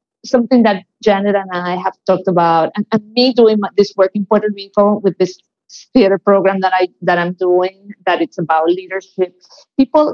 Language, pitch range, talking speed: English, 190-235 Hz, 185 wpm